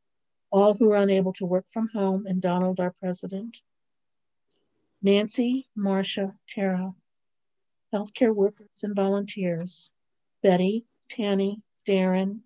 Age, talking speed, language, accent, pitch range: 60-79, 105 wpm, English, American, 185-220 Hz